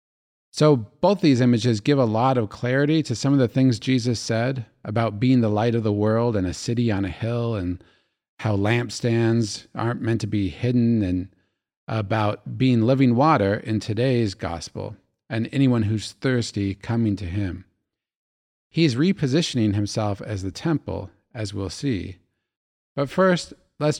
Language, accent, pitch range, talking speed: English, American, 100-125 Hz, 160 wpm